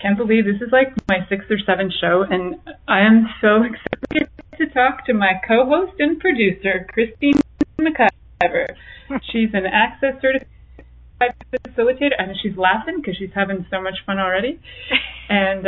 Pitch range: 185-230 Hz